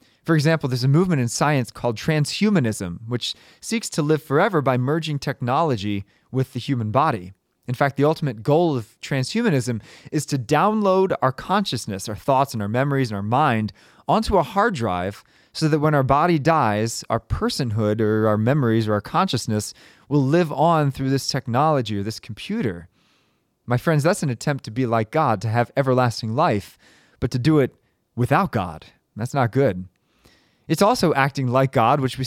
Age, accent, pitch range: 20-39, American, 115-155 Hz